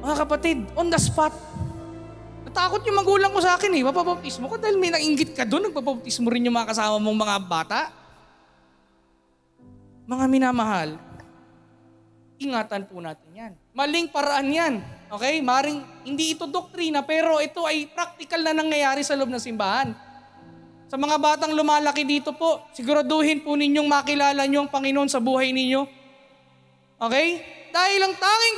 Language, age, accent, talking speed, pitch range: Filipino, 20-39, native, 150 wpm, 255-345 Hz